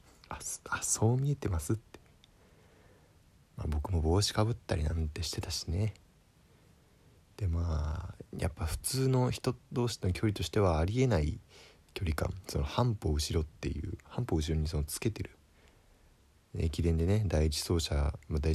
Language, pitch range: Japanese, 80-105 Hz